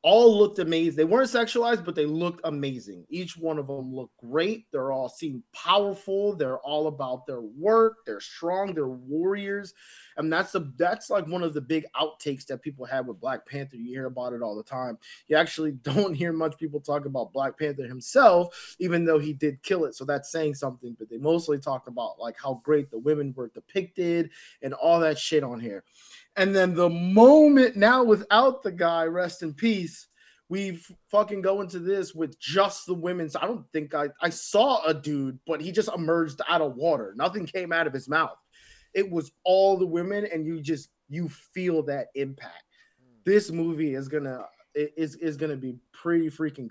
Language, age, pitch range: English, 20-39, 145-185 Hz